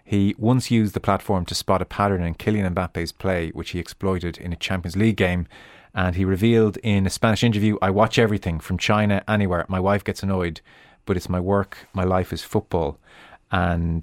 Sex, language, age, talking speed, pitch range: male, English, 30-49, 200 wpm, 85-105 Hz